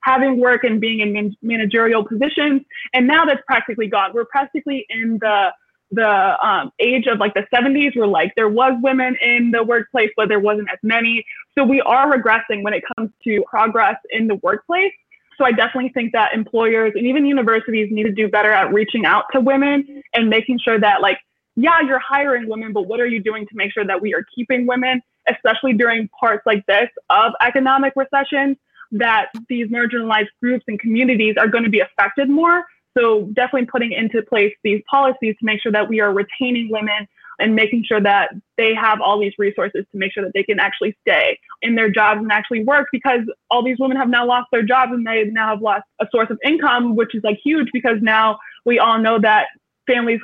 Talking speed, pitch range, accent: 210 wpm, 215-260 Hz, American